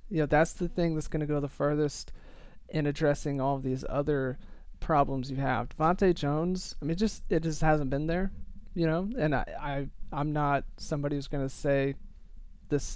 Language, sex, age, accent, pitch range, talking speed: English, male, 30-49, American, 140-170 Hz, 205 wpm